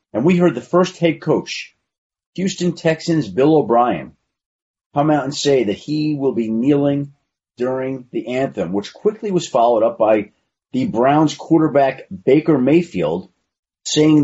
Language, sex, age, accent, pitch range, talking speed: English, male, 40-59, American, 135-170 Hz, 150 wpm